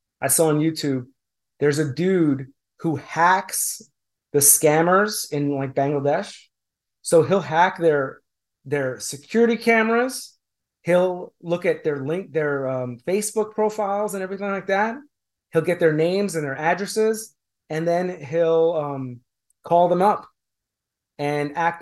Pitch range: 140-175 Hz